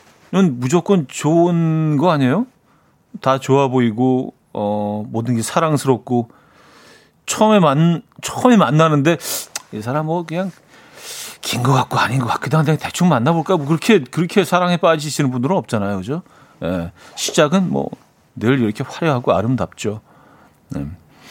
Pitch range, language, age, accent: 130-175 Hz, Korean, 40-59, native